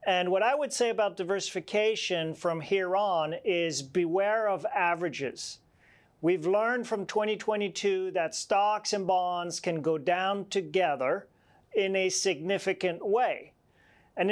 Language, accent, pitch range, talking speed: English, American, 185-230 Hz, 130 wpm